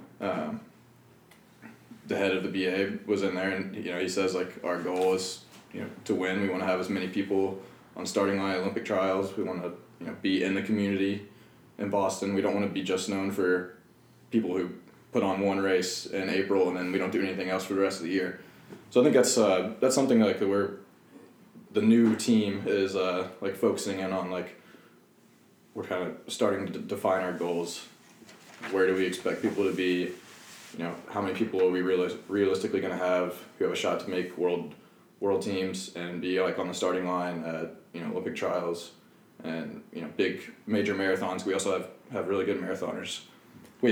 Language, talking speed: English, 215 wpm